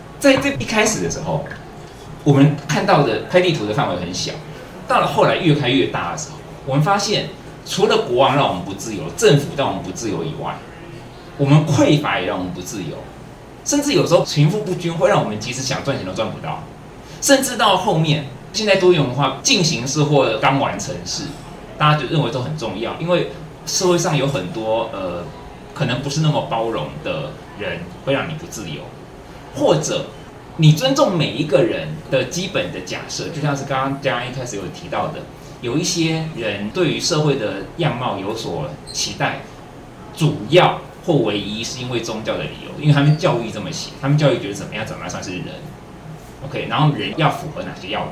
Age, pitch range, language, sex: 30-49, 135-175 Hz, Chinese, male